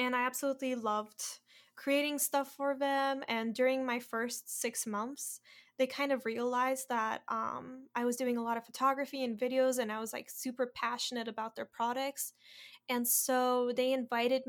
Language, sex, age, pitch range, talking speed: English, female, 10-29, 230-260 Hz, 175 wpm